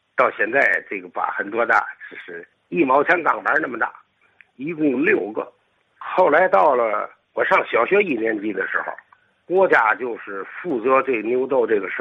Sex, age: male, 60-79